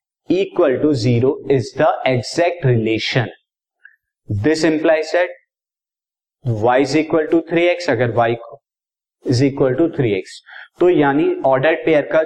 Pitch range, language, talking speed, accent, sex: 135-175 Hz, Hindi, 110 wpm, native, male